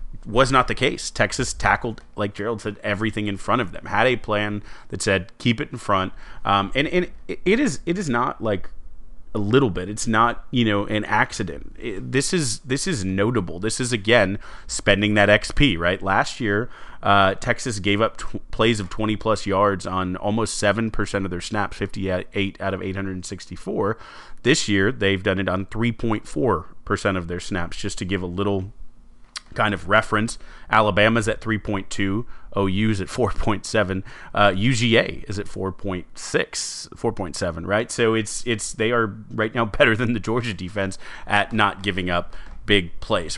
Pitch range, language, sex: 95-115 Hz, English, male